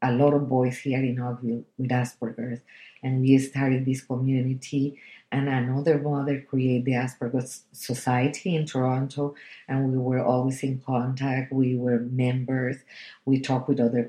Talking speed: 155 wpm